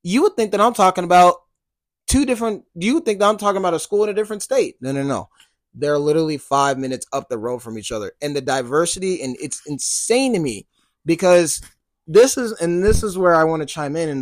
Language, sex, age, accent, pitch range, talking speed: English, male, 20-39, American, 145-195 Hz, 235 wpm